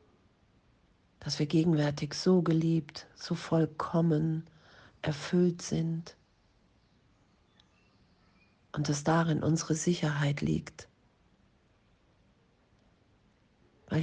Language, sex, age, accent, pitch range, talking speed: German, female, 40-59, German, 150-165 Hz, 70 wpm